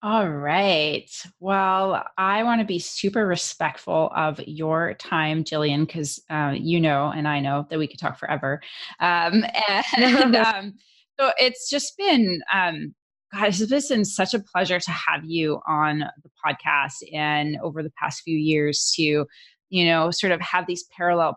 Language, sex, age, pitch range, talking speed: English, female, 20-39, 155-195 Hz, 165 wpm